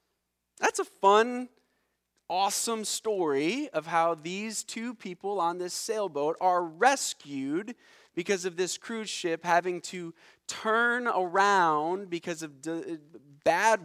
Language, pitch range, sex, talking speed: English, 135-190 Hz, male, 115 wpm